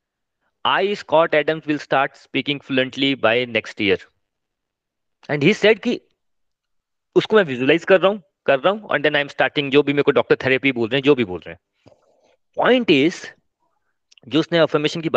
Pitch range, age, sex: 135-205 Hz, 30-49, male